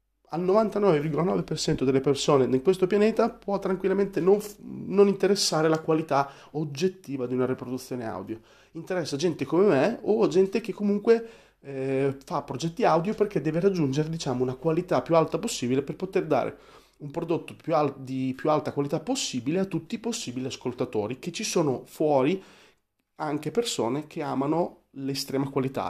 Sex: male